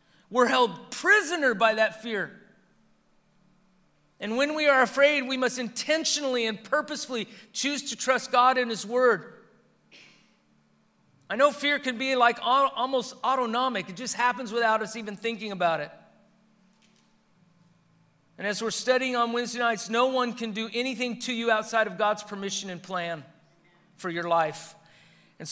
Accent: American